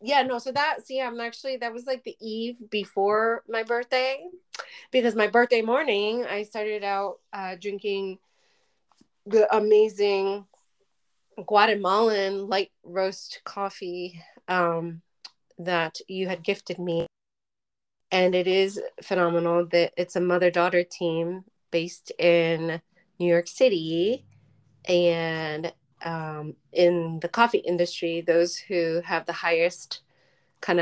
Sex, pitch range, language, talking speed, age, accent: female, 170-205 Hz, English, 125 wpm, 30-49, American